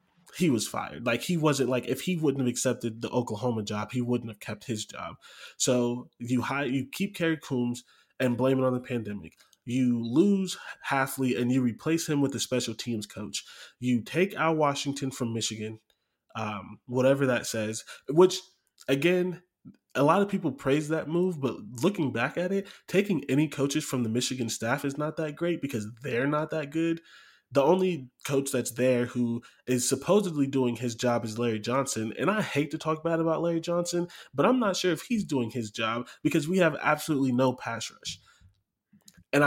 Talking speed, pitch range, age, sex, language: 190 wpm, 120-160 Hz, 20-39, male, English